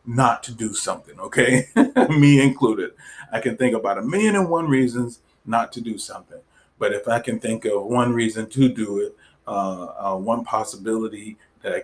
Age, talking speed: 30-49, 190 wpm